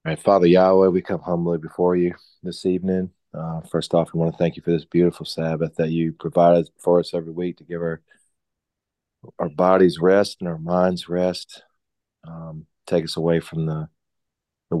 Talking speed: 180 wpm